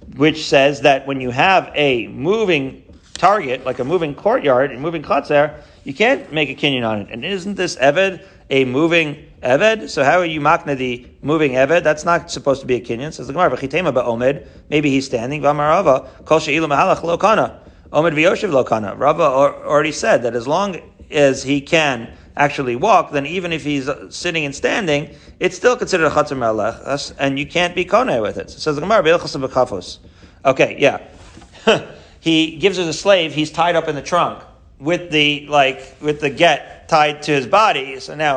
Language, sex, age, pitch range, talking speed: English, male, 40-59, 135-165 Hz, 165 wpm